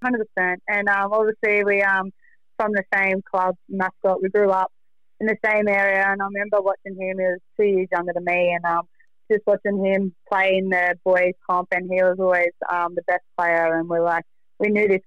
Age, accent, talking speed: 20-39, Australian, 225 wpm